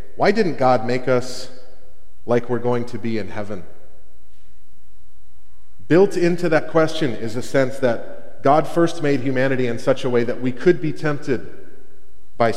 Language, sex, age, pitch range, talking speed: English, male, 30-49, 105-150 Hz, 160 wpm